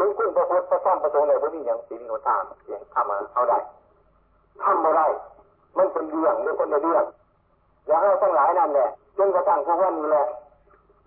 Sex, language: male, Thai